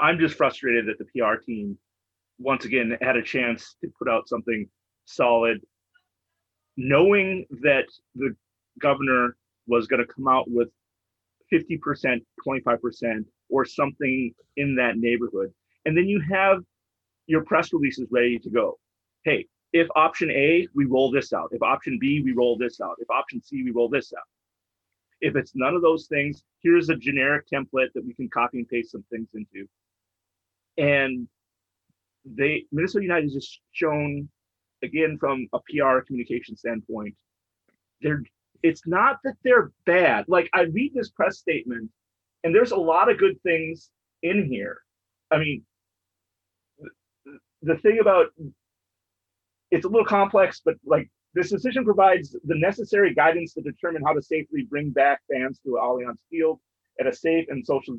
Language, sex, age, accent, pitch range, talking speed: English, male, 30-49, American, 115-165 Hz, 155 wpm